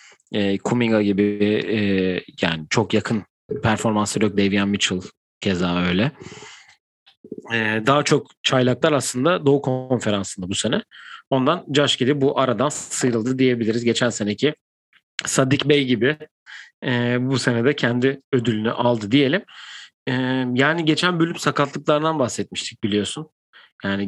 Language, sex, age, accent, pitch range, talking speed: Turkish, male, 40-59, native, 110-140 Hz, 125 wpm